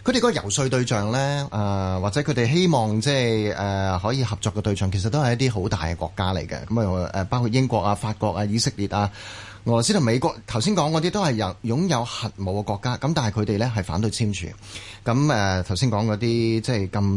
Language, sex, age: Chinese, male, 30-49